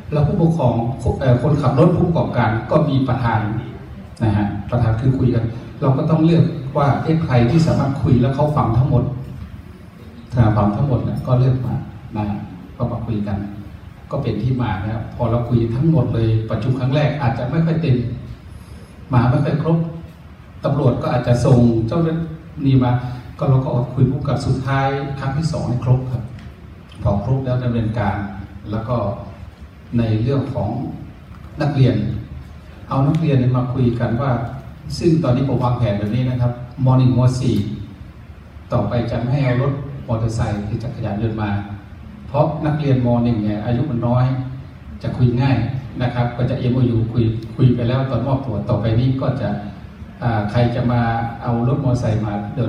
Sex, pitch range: male, 110-135 Hz